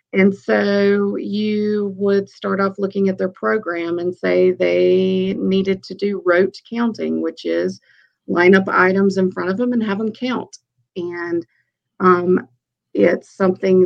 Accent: American